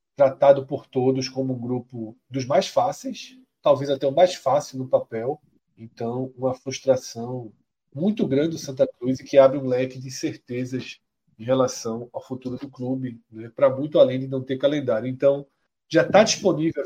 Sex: male